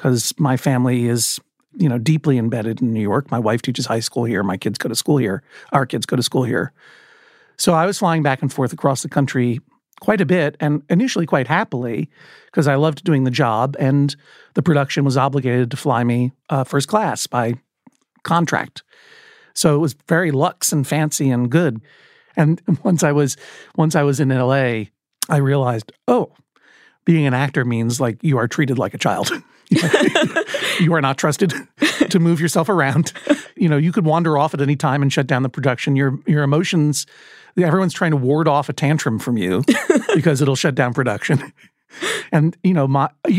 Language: English